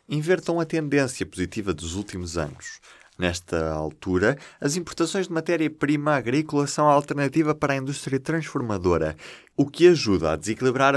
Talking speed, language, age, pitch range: 140 wpm, Portuguese, 20-39, 90-145 Hz